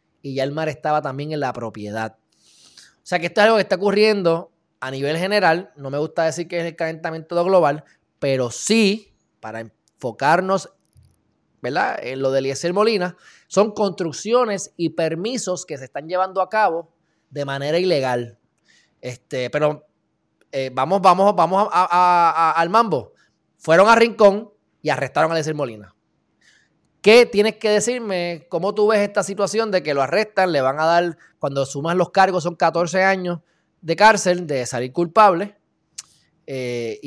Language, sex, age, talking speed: Spanish, male, 20-39, 165 wpm